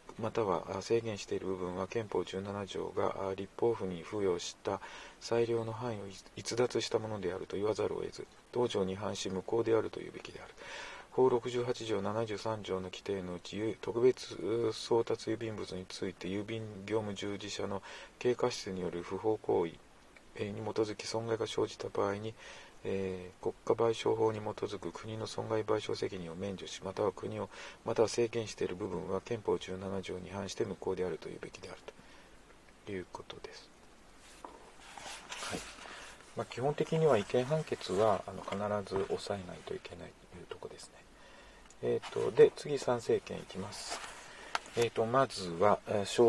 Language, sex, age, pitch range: Japanese, male, 40-59, 95-120 Hz